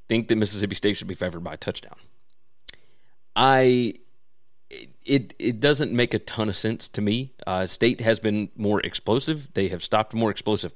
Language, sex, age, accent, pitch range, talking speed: English, male, 30-49, American, 105-130 Hz, 185 wpm